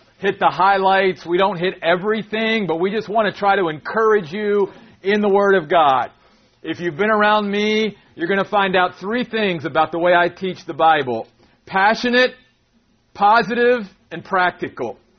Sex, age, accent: male, 40-59, American